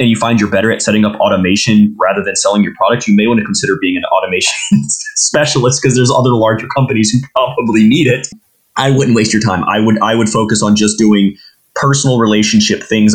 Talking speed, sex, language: 220 wpm, male, English